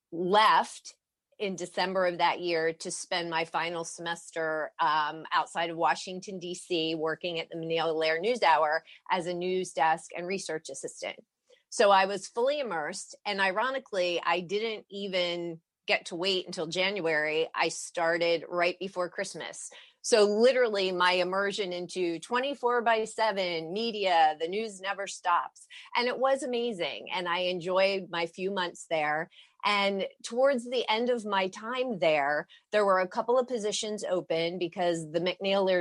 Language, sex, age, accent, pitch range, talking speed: English, female, 30-49, American, 170-205 Hz, 155 wpm